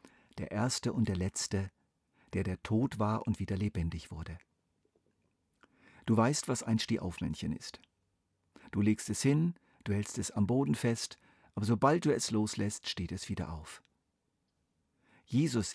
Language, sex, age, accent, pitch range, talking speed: German, male, 50-69, German, 95-120 Hz, 150 wpm